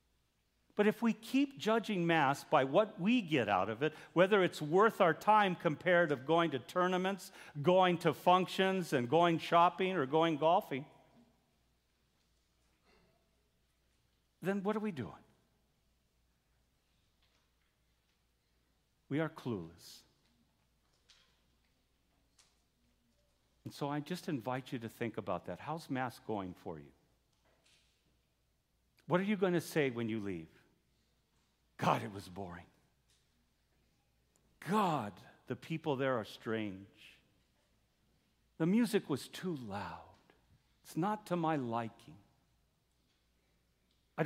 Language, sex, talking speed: English, male, 115 wpm